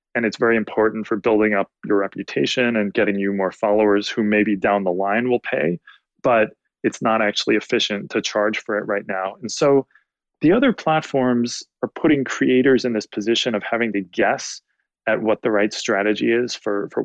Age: 20-39